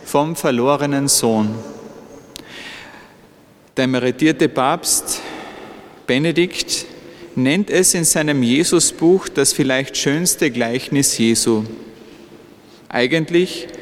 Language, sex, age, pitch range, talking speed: English, male, 40-59, 130-160 Hz, 80 wpm